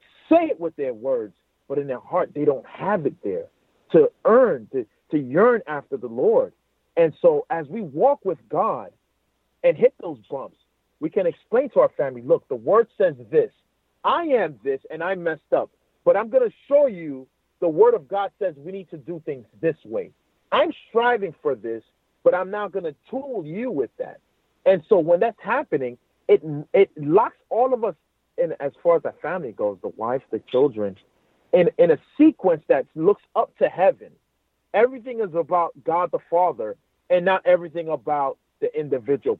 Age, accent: 40-59, American